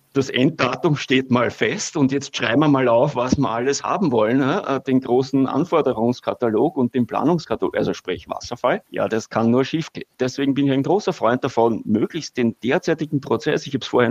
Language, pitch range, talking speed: German, 115-135 Hz, 190 wpm